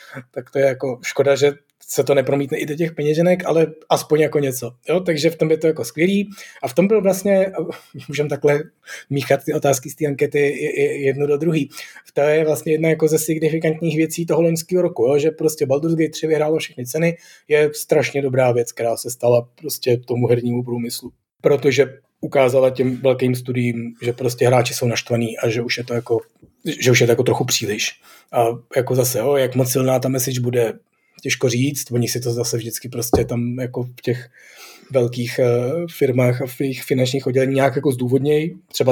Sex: male